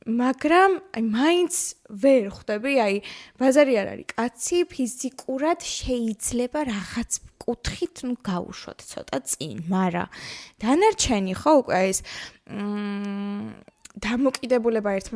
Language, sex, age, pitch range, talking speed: English, female, 20-39, 190-255 Hz, 65 wpm